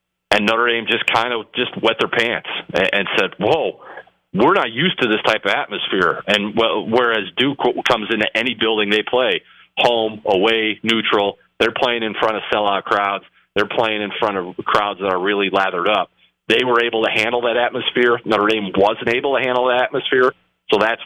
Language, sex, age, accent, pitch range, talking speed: English, male, 40-59, American, 100-115 Hz, 195 wpm